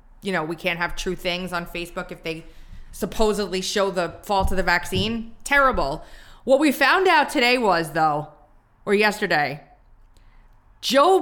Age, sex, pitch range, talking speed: 20-39, female, 170-225 Hz, 155 wpm